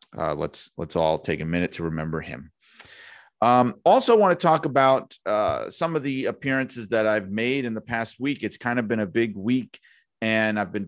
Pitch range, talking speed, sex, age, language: 90-125 Hz, 210 wpm, male, 40-59, English